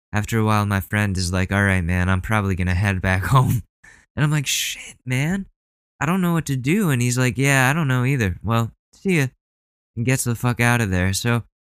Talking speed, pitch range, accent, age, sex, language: 235 wpm, 95-115 Hz, American, 20-39, male, English